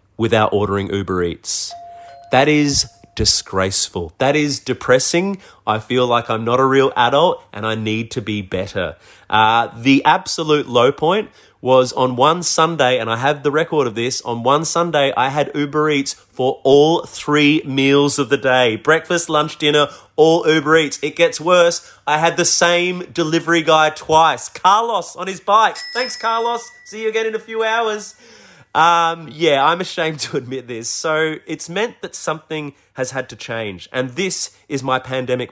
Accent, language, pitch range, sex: Australian, English, 130-185 Hz, male